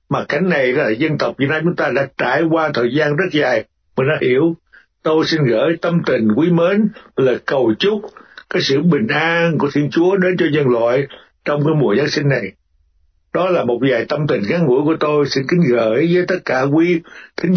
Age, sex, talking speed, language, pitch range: 60-79, male, 225 wpm, Vietnamese, 120-165 Hz